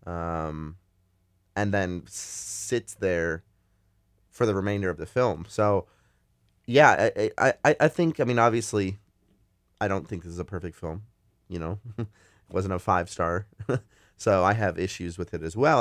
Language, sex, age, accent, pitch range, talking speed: English, male, 30-49, American, 90-105 Hz, 165 wpm